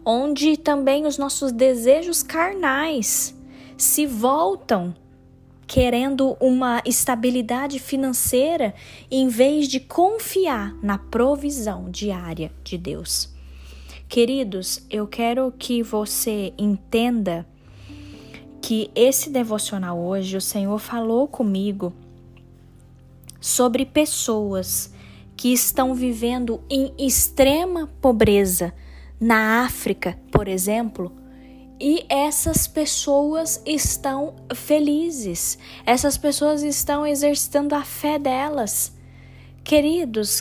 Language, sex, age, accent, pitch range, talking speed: Portuguese, female, 10-29, Brazilian, 210-300 Hz, 90 wpm